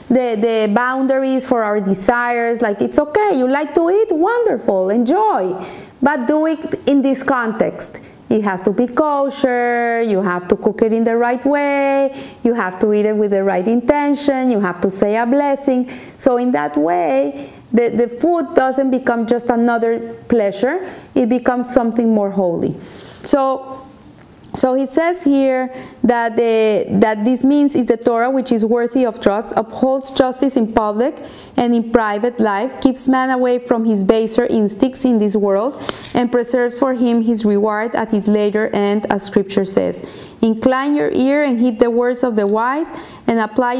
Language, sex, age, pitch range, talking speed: English, female, 30-49, 220-265 Hz, 175 wpm